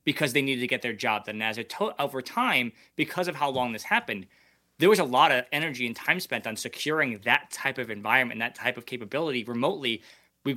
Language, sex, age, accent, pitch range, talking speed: English, male, 20-39, American, 115-140 Hz, 235 wpm